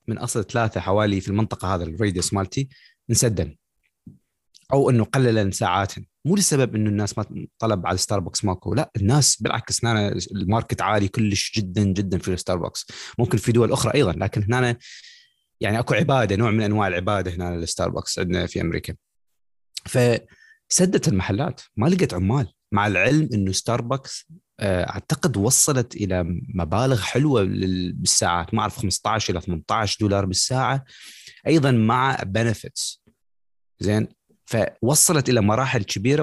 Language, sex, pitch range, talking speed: Arabic, male, 95-120 Hz, 135 wpm